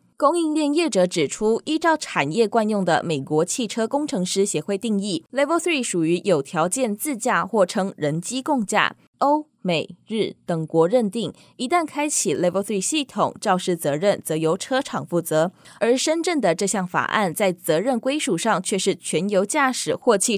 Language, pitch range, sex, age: Chinese, 175-250 Hz, female, 20-39